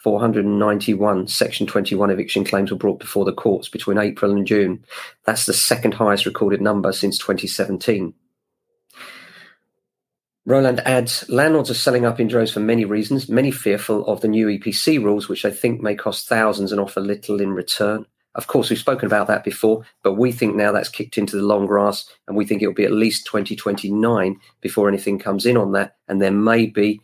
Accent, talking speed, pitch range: British, 195 wpm, 100-115 Hz